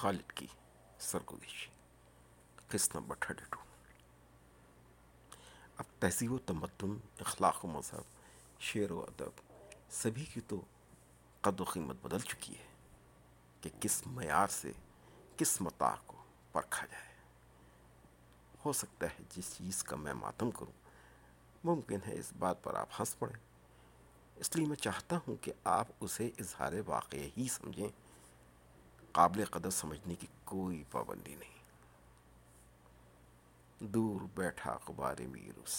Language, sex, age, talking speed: Urdu, male, 60-79, 130 wpm